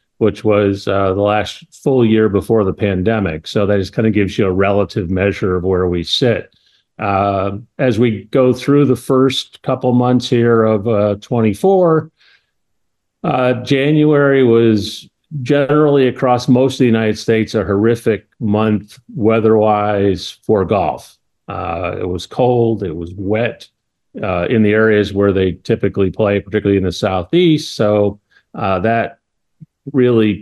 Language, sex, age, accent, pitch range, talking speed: English, male, 50-69, American, 100-125 Hz, 150 wpm